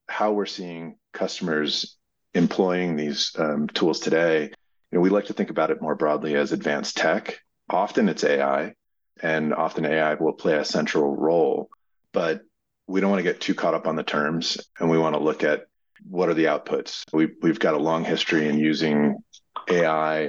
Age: 40-59